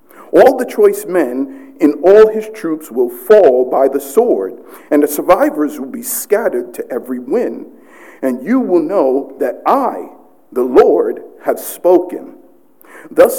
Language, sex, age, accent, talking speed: English, male, 50-69, American, 150 wpm